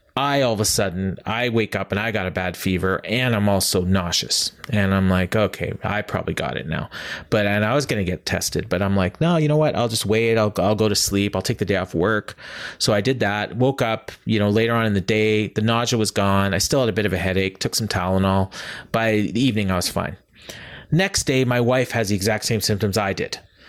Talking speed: 260 wpm